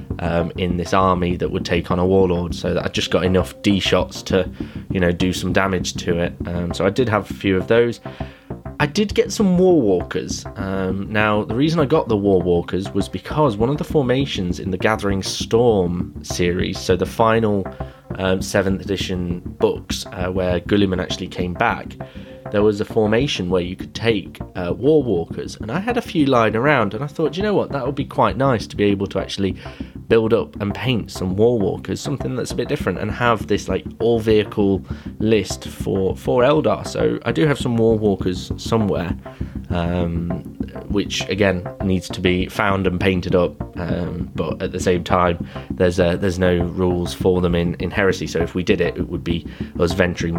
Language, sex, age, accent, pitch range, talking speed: English, male, 20-39, British, 85-110 Hz, 210 wpm